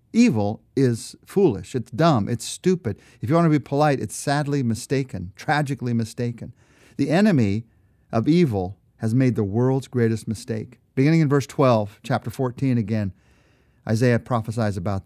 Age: 50-69